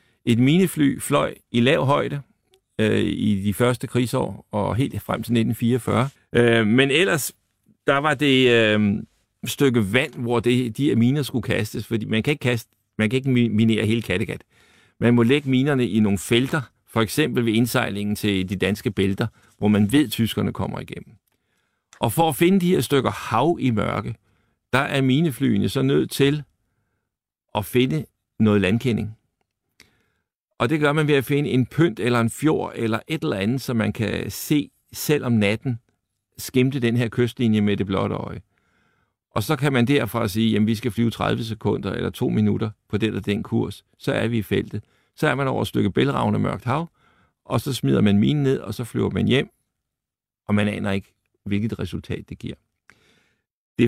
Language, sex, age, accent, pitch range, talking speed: Danish, male, 60-79, native, 105-130 Hz, 190 wpm